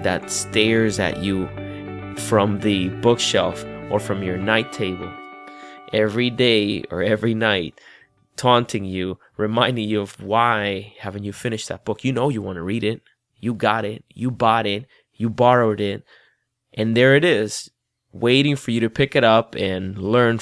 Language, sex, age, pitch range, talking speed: English, male, 20-39, 100-125 Hz, 170 wpm